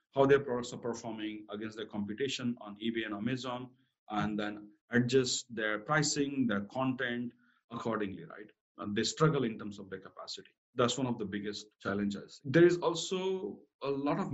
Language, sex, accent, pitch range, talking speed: English, male, Indian, 110-145 Hz, 170 wpm